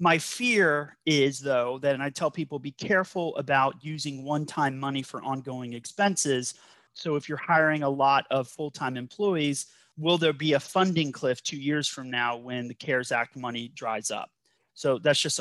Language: English